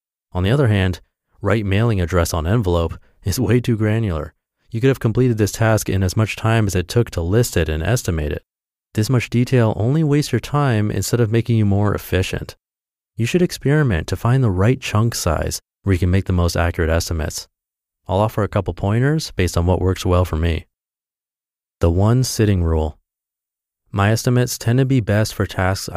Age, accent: 30-49, American